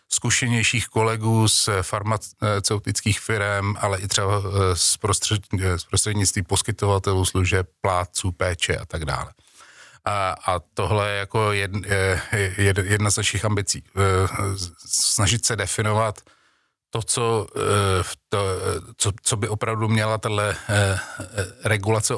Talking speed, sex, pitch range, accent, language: 110 wpm, male, 100-115 Hz, native, Czech